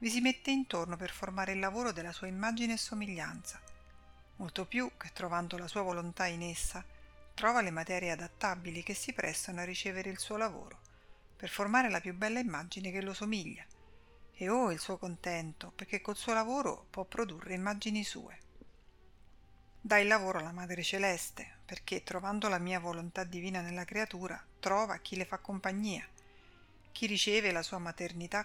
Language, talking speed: Italian, 170 wpm